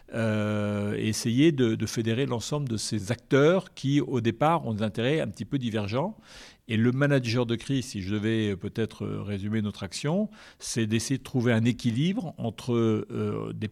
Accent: French